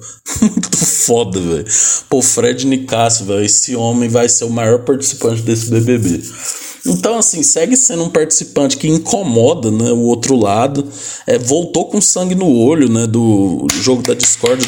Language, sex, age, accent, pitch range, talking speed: Portuguese, male, 20-39, Brazilian, 115-150 Hz, 155 wpm